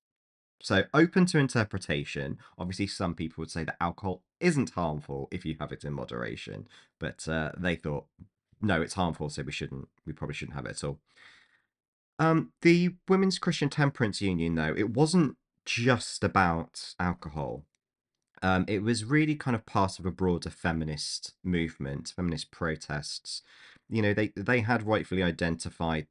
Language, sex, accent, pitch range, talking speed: English, male, British, 80-105 Hz, 160 wpm